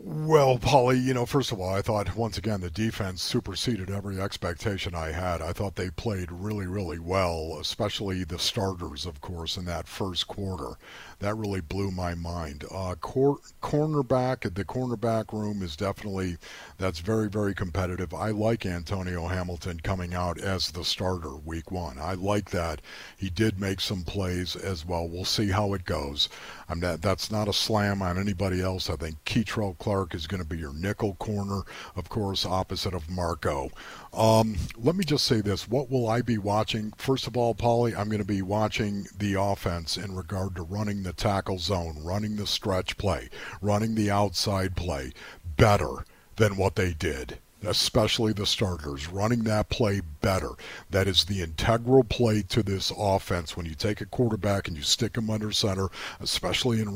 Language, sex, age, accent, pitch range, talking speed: English, male, 50-69, American, 90-110 Hz, 180 wpm